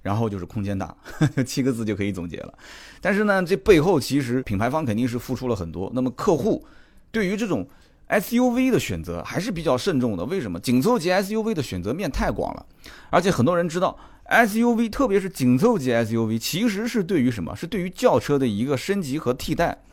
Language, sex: Chinese, male